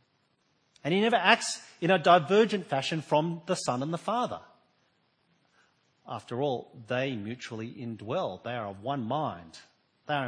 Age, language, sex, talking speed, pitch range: 40-59, English, male, 145 wpm, 125-170 Hz